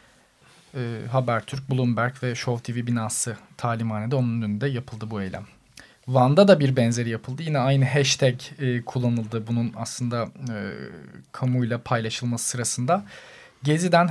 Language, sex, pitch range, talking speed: Turkish, male, 120-145 Hz, 130 wpm